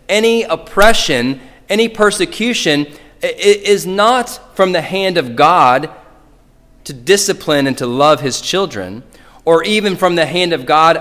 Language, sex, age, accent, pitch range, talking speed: English, male, 30-49, American, 130-190 Hz, 135 wpm